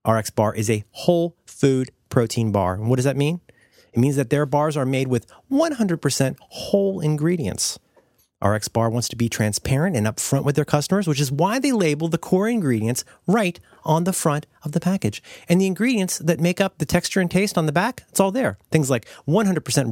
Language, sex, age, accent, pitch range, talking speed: English, male, 30-49, American, 120-185 Hz, 210 wpm